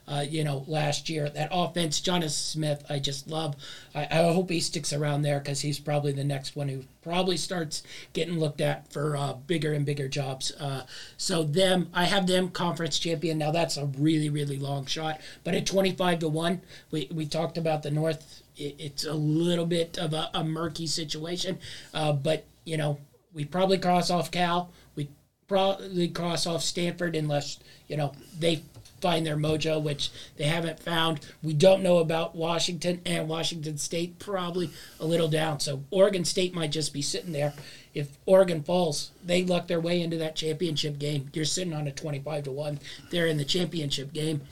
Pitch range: 145-170 Hz